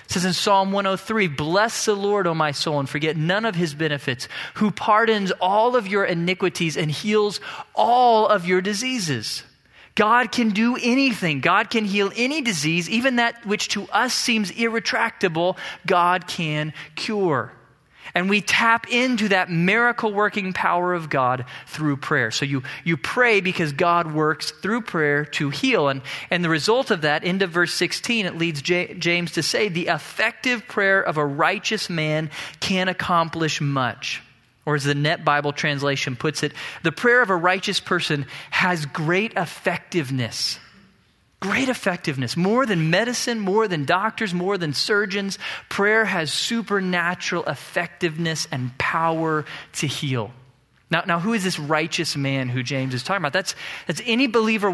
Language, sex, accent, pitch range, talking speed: English, male, American, 150-205 Hz, 165 wpm